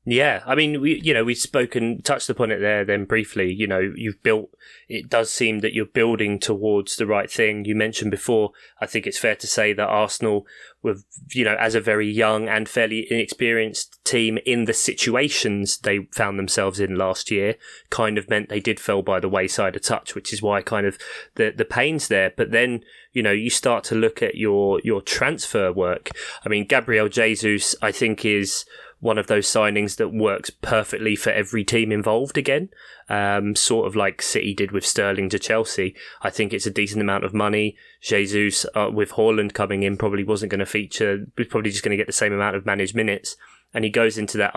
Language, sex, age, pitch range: English, male, 20-39, 100-115 Hz